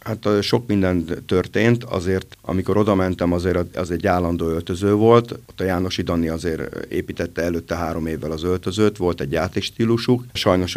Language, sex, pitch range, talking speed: Hungarian, male, 90-105 Hz, 160 wpm